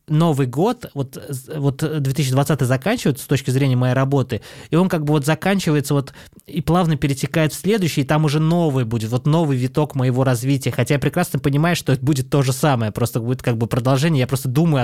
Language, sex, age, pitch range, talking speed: Russian, male, 20-39, 130-155 Hz, 205 wpm